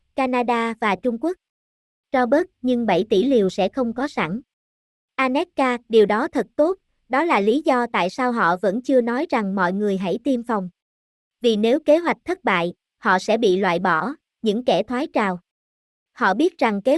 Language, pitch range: Vietnamese, 210-275 Hz